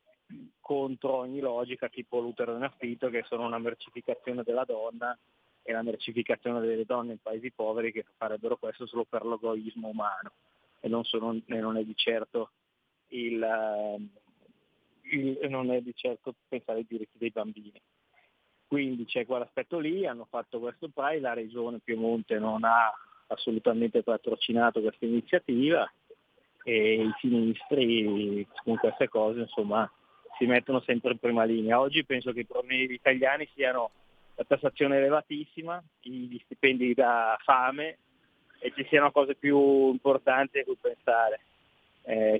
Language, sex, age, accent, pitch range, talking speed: Italian, male, 20-39, native, 115-135 Hz, 145 wpm